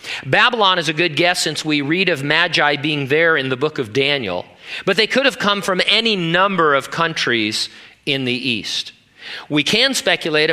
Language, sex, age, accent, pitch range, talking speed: English, male, 40-59, American, 130-175 Hz, 190 wpm